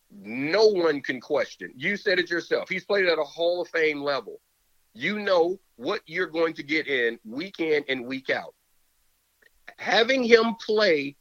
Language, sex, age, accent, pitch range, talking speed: English, male, 40-59, American, 150-235 Hz, 170 wpm